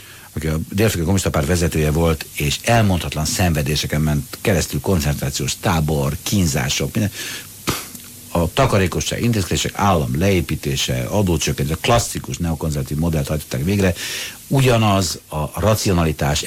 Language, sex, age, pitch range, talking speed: Hungarian, male, 60-79, 75-100 Hz, 110 wpm